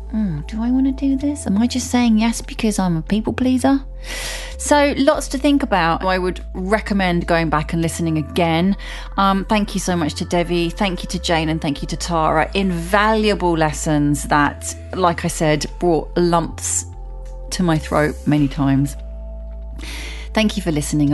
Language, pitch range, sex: English, 150-205 Hz, female